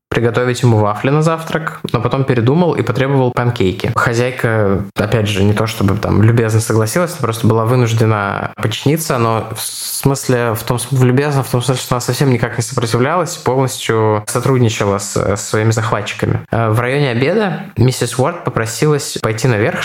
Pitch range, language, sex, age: 110-135 Hz, Russian, male, 20-39